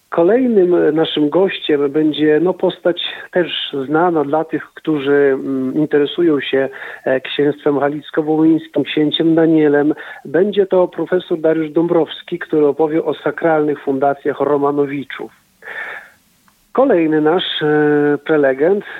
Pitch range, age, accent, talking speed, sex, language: 140-170 Hz, 40-59, native, 95 wpm, male, Polish